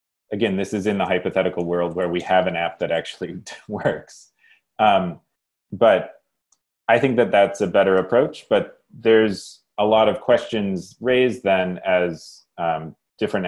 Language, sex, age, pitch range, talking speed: English, male, 30-49, 80-95 Hz, 155 wpm